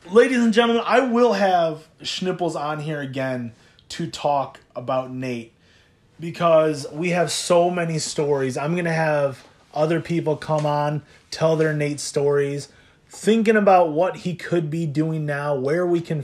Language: English